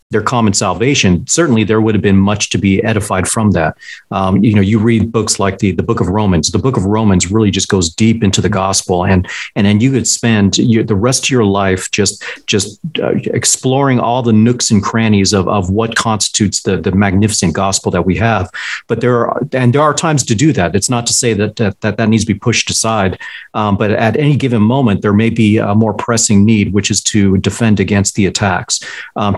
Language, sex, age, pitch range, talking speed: English, male, 40-59, 100-120 Hz, 230 wpm